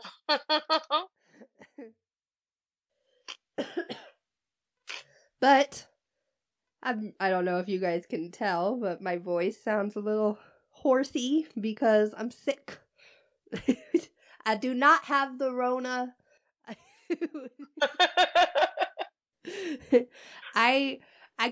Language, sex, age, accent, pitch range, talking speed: English, female, 30-49, American, 210-290 Hz, 80 wpm